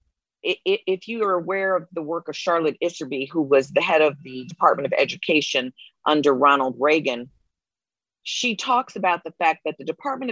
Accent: American